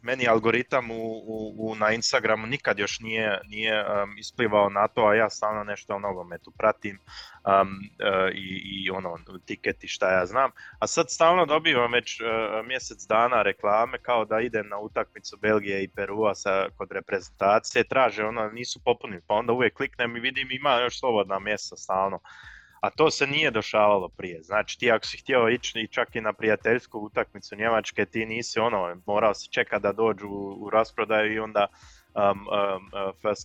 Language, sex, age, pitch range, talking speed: Croatian, male, 20-39, 100-120 Hz, 180 wpm